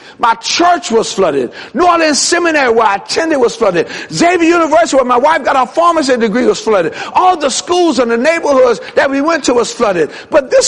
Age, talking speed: 60-79, 210 wpm